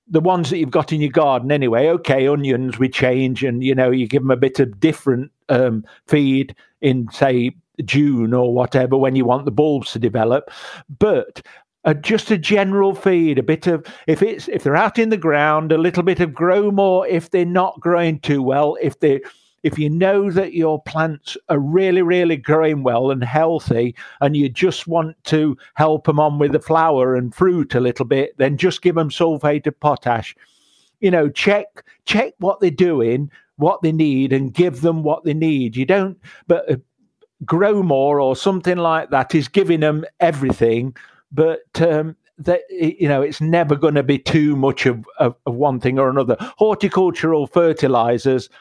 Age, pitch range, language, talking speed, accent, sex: 50-69, 135-170 Hz, English, 190 wpm, British, male